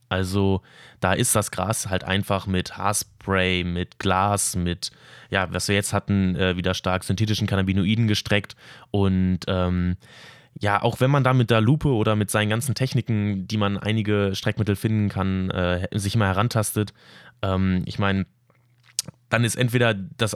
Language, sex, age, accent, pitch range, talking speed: German, male, 20-39, German, 100-125 Hz, 160 wpm